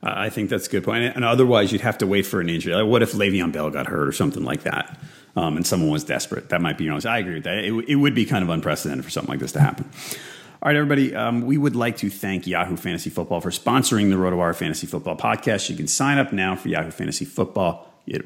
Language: English